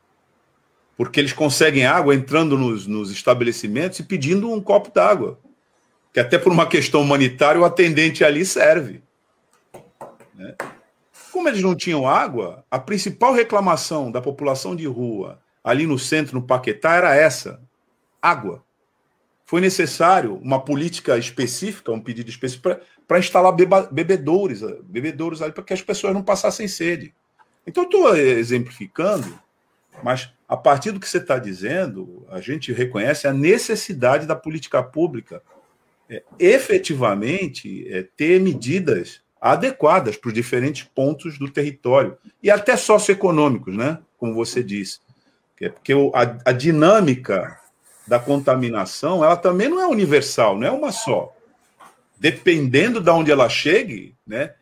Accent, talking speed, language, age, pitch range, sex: Brazilian, 130 wpm, Portuguese, 50-69, 130-190 Hz, male